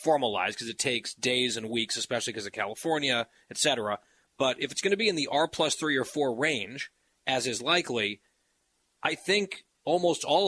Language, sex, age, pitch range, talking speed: English, male, 30-49, 120-150 Hz, 195 wpm